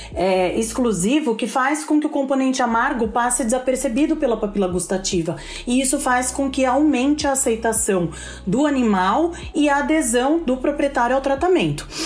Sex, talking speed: female, 150 wpm